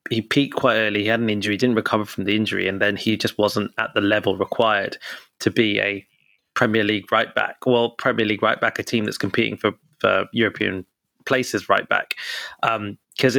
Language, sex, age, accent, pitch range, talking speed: English, male, 20-39, British, 110-140 Hz, 205 wpm